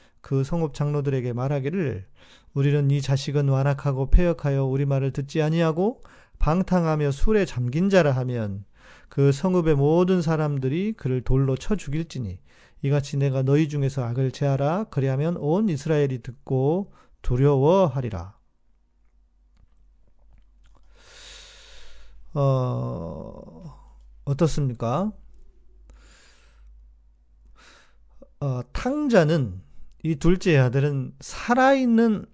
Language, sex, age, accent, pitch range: Korean, male, 40-59, native, 125-165 Hz